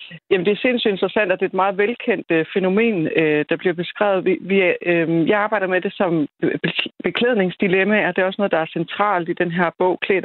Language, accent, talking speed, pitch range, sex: Danish, native, 200 wpm, 175-220 Hz, female